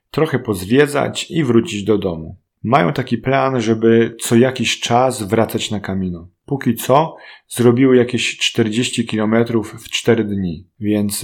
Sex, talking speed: male, 140 wpm